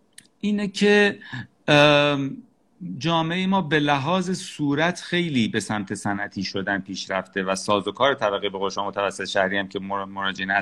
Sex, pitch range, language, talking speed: male, 100-145 Hz, Persian, 140 wpm